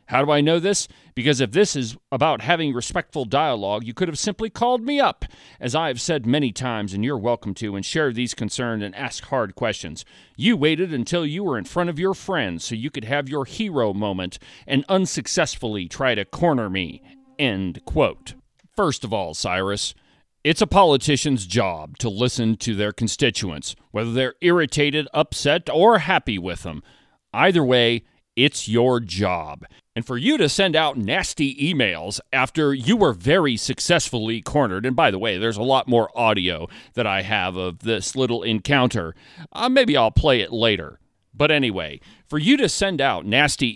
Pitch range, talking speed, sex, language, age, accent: 110-150 Hz, 180 wpm, male, English, 40-59, American